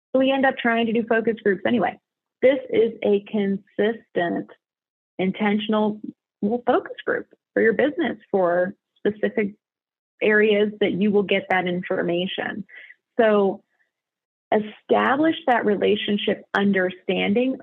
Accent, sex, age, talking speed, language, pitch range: American, female, 30-49, 110 wpm, English, 180-230 Hz